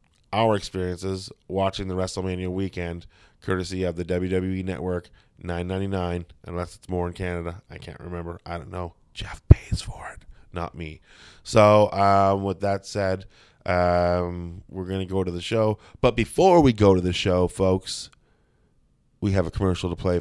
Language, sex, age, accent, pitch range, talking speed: English, male, 20-39, American, 90-100 Hz, 165 wpm